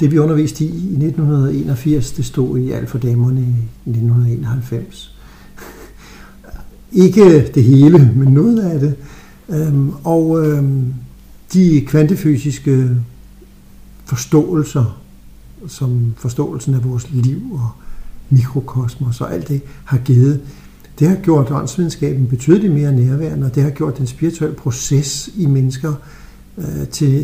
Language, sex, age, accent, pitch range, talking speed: English, male, 60-79, Danish, 130-160 Hz, 115 wpm